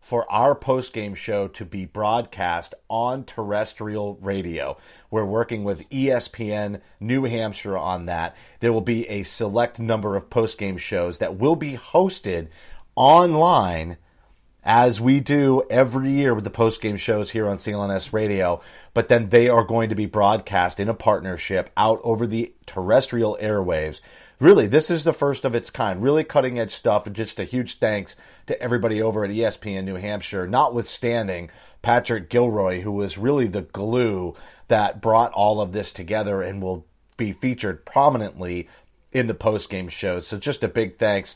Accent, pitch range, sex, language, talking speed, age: American, 95-120 Hz, male, English, 160 wpm, 30-49